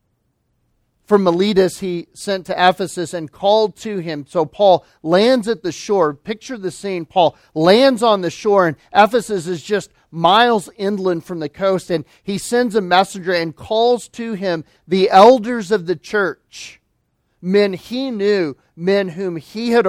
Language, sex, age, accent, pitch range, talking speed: English, male, 40-59, American, 170-215 Hz, 165 wpm